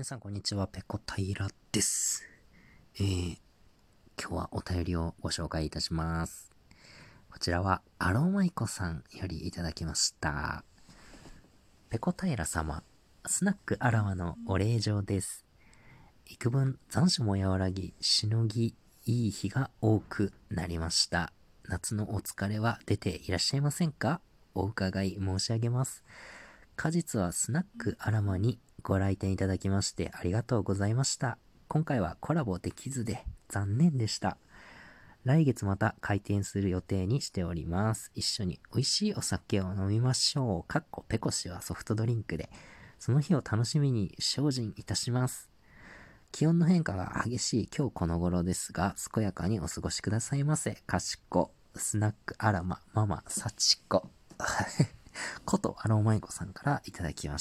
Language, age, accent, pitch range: Japanese, 40-59, native, 90-120 Hz